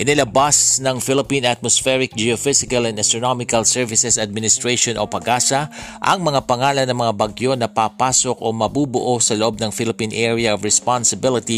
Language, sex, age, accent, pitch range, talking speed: Filipino, male, 50-69, native, 110-135 Hz, 145 wpm